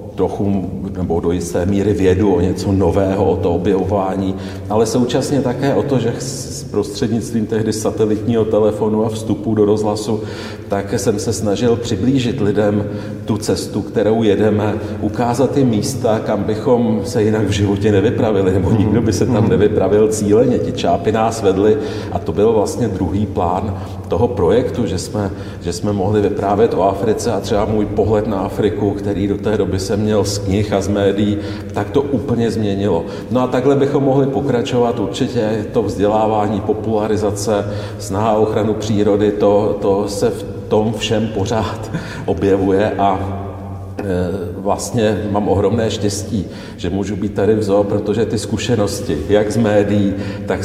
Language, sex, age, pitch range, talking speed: Czech, male, 40-59, 100-110 Hz, 160 wpm